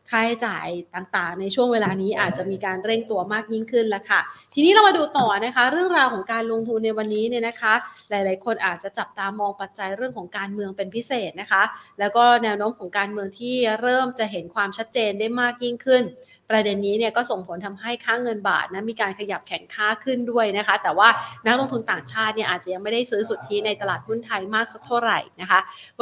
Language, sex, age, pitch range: Thai, female, 30-49, 195-235 Hz